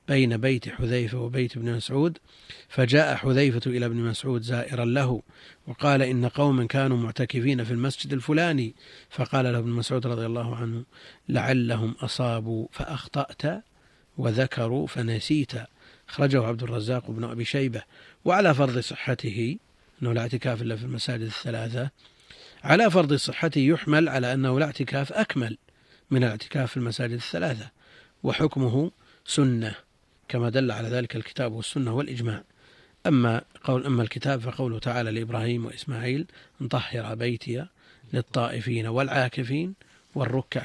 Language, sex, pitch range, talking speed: Arabic, male, 120-135 Hz, 125 wpm